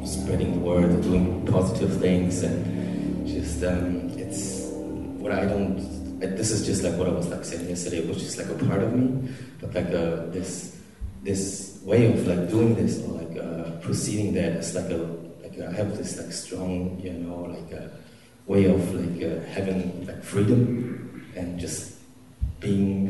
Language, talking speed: English, 175 wpm